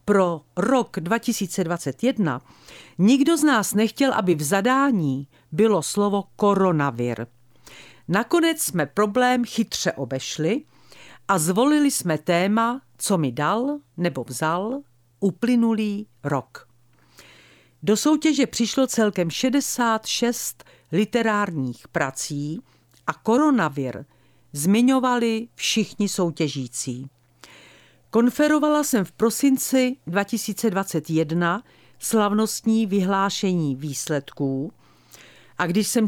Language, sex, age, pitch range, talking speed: Czech, female, 50-69, 145-225 Hz, 85 wpm